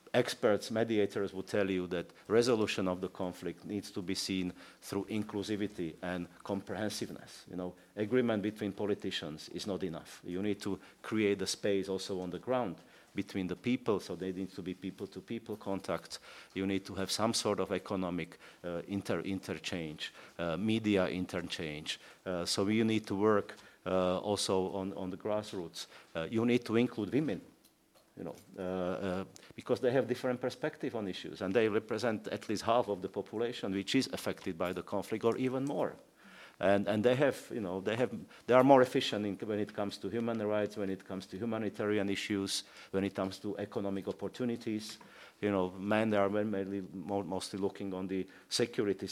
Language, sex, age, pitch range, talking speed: Slovak, male, 50-69, 95-110 Hz, 185 wpm